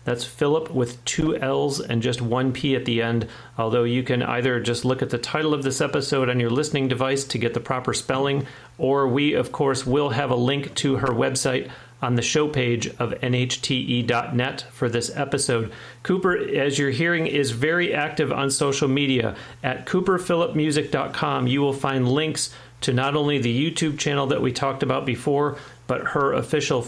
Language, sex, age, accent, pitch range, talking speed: English, male, 40-59, American, 125-145 Hz, 185 wpm